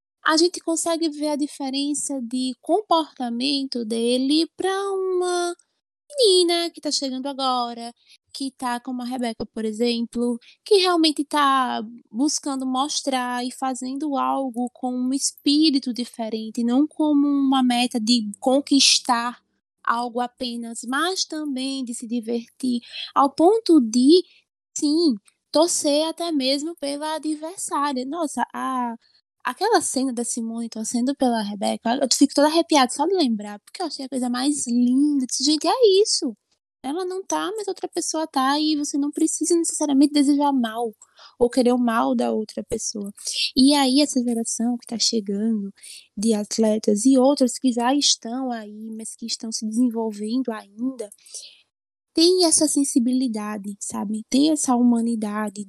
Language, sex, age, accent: Portuguese, female, 20-39, Brazilian